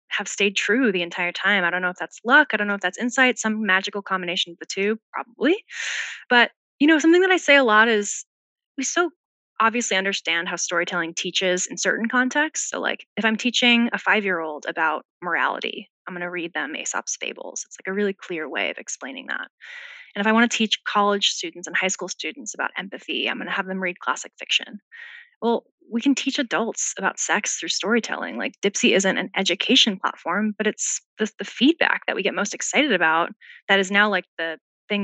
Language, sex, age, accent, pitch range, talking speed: English, female, 10-29, American, 180-245 Hz, 210 wpm